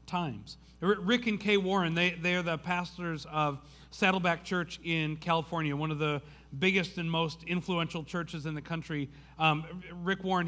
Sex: male